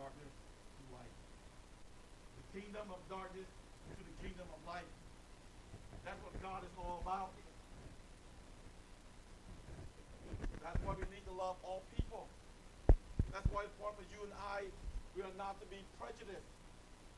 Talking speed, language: 140 wpm, English